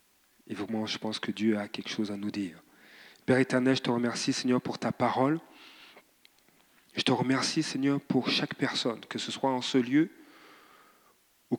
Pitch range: 125-145 Hz